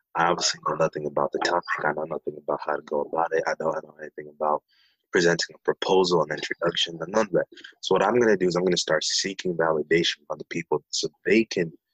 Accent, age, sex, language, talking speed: American, 20-39, male, English, 240 wpm